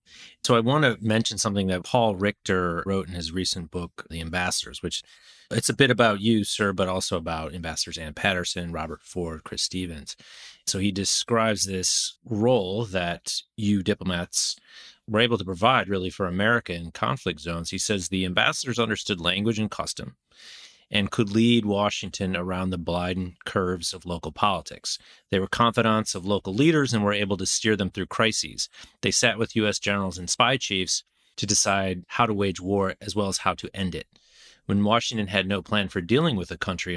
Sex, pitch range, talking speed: male, 90-105 Hz, 185 wpm